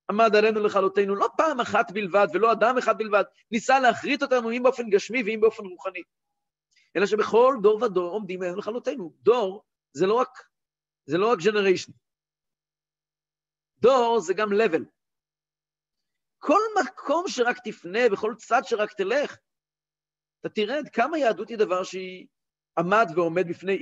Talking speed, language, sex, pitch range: 145 wpm, Hebrew, male, 170-240 Hz